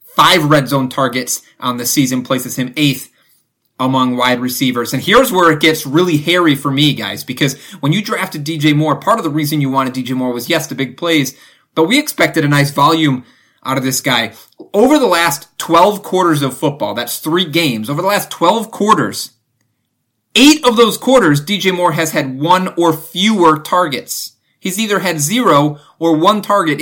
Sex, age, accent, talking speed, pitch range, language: male, 30-49, American, 190 wpm, 140-185 Hz, English